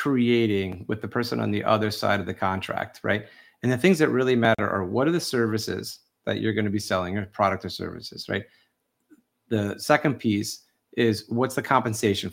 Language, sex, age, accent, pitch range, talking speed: English, male, 30-49, American, 105-125 Hz, 200 wpm